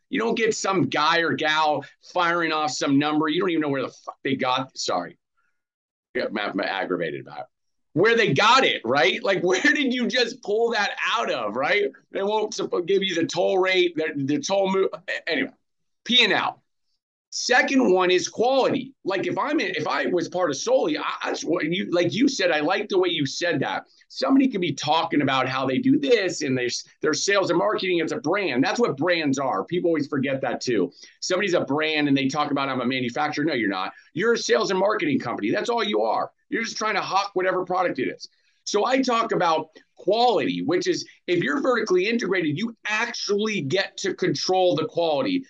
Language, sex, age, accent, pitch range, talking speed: English, male, 40-59, American, 160-240 Hz, 210 wpm